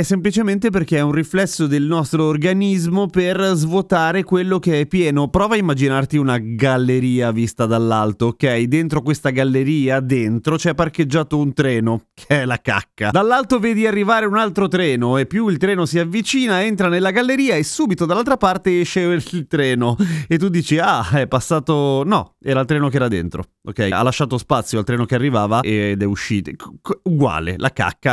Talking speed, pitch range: 180 wpm, 120-180 Hz